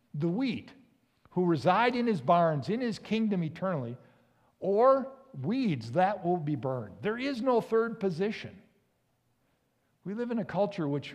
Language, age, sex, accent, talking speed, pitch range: English, 50-69, male, American, 150 wpm, 145-210 Hz